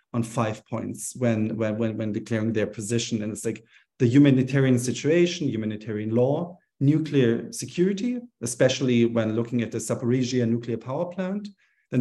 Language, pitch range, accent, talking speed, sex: English, 120-145 Hz, German, 145 wpm, male